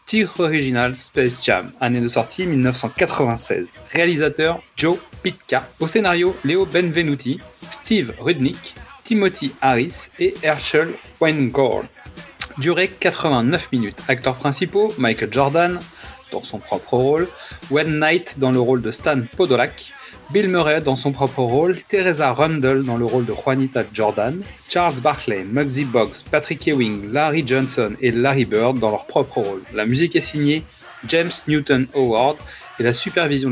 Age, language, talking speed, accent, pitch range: 40-59, French, 145 wpm, French, 130-170 Hz